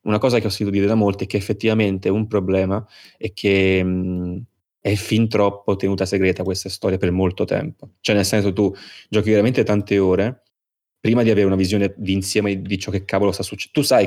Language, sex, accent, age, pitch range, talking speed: Italian, male, native, 20-39, 95-110 Hz, 215 wpm